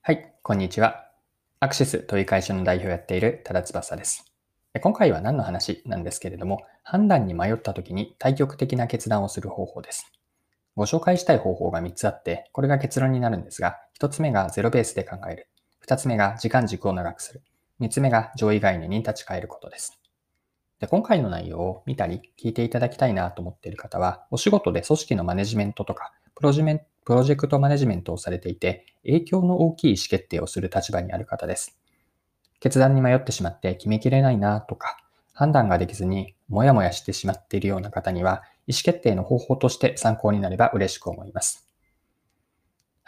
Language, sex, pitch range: Japanese, male, 95-135 Hz